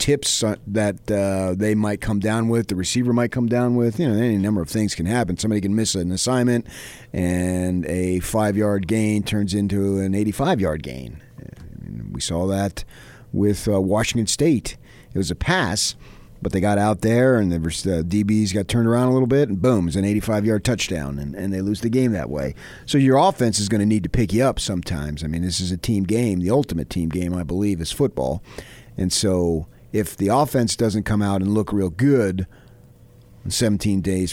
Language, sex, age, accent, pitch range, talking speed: English, male, 40-59, American, 90-120 Hz, 205 wpm